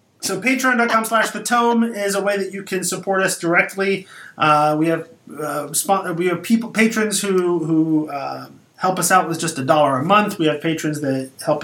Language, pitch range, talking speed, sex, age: English, 145-190 Hz, 200 wpm, male, 30-49